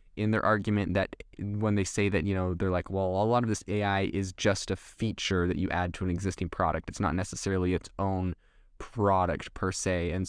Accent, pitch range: American, 90-105 Hz